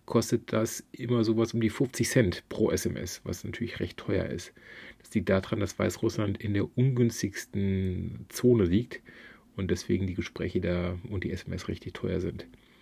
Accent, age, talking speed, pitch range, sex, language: German, 40-59, 170 wpm, 105-140 Hz, male, German